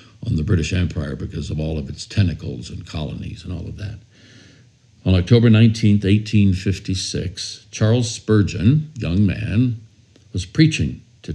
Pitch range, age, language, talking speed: 95-115 Hz, 60-79, English, 145 wpm